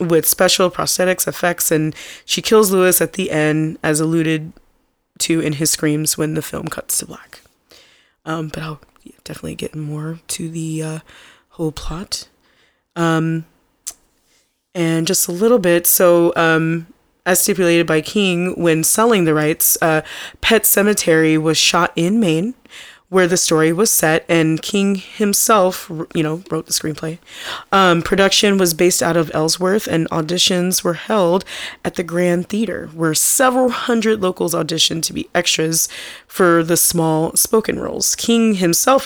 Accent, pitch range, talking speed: American, 160-185 Hz, 155 wpm